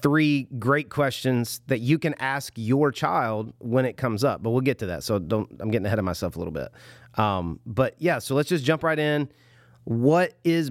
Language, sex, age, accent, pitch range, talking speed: English, male, 30-49, American, 115-135 Hz, 220 wpm